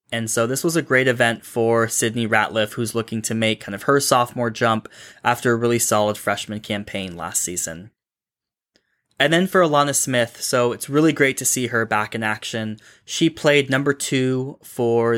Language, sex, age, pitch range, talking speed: English, male, 20-39, 110-125 Hz, 185 wpm